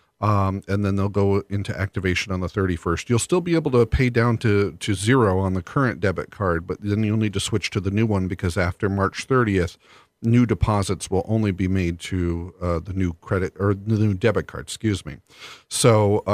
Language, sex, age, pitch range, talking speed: English, male, 40-59, 95-115 Hz, 215 wpm